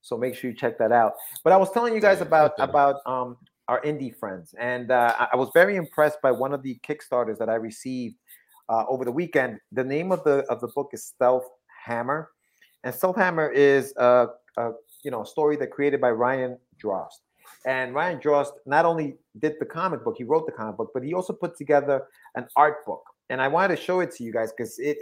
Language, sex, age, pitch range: English, male, 30-49, 125-165 Hz